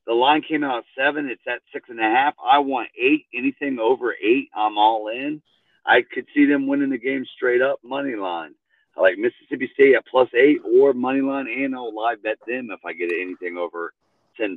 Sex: male